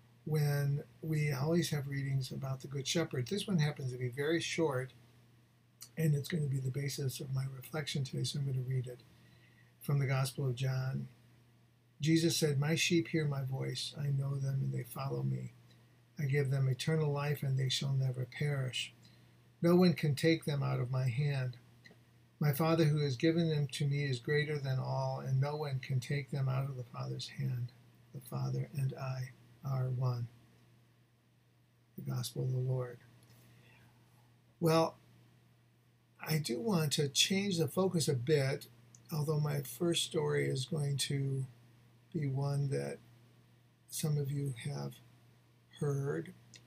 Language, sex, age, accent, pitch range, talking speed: English, male, 50-69, American, 120-150 Hz, 165 wpm